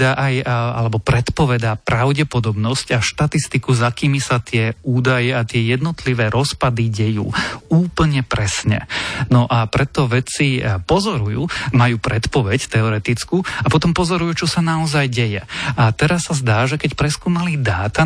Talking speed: 135 wpm